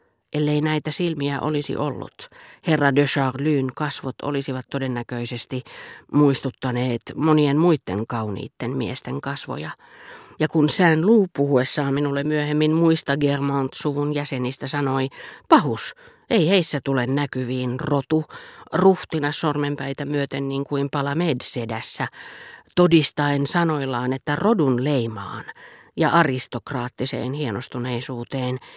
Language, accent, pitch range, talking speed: Finnish, native, 130-160 Hz, 100 wpm